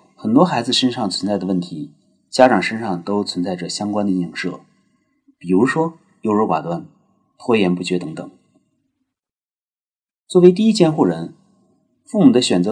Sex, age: male, 30-49